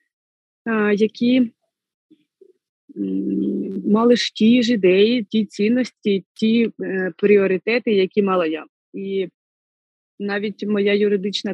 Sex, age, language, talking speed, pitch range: female, 20-39, Ukrainian, 95 wpm, 185-235 Hz